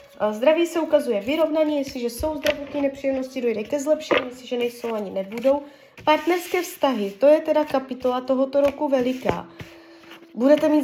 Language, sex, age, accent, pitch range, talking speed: Czech, female, 20-39, native, 235-285 Hz, 140 wpm